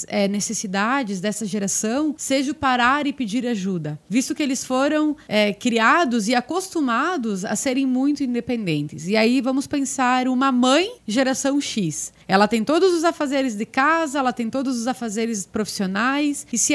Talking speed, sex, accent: 160 wpm, female, Brazilian